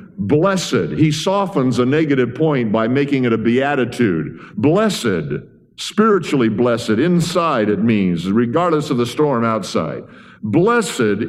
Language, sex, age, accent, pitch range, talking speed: English, male, 50-69, American, 110-160 Hz, 120 wpm